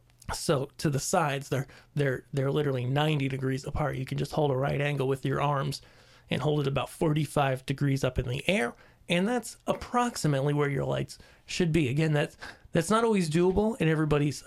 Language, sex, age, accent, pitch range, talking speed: English, male, 30-49, American, 135-165 Hz, 195 wpm